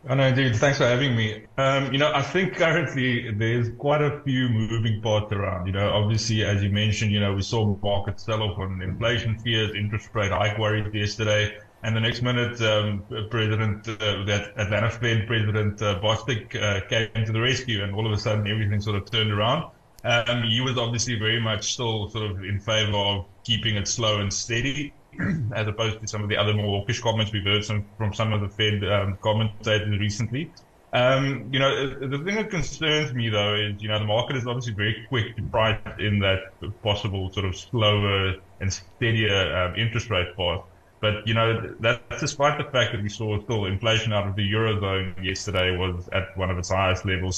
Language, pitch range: English, 100-115 Hz